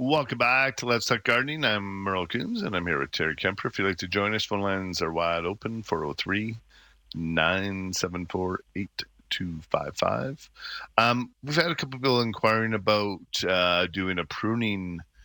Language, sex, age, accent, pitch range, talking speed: English, male, 40-59, American, 85-110 Hz, 155 wpm